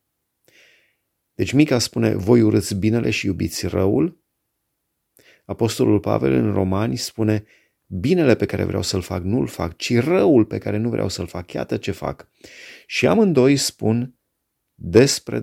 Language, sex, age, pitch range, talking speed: Romanian, male, 30-49, 90-110 Hz, 145 wpm